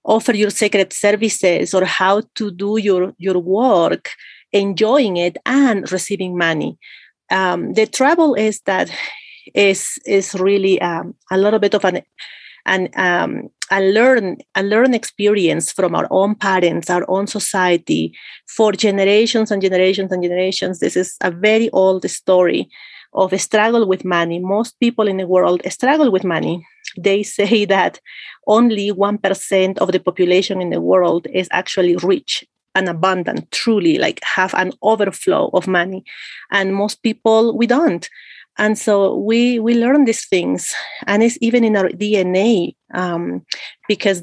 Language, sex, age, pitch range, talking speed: English, female, 30-49, 185-220 Hz, 150 wpm